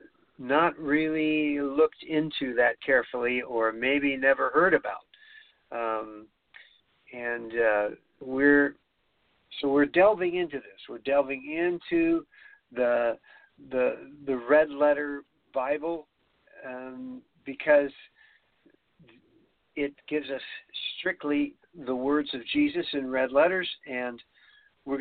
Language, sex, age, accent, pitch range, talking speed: English, male, 50-69, American, 130-160 Hz, 105 wpm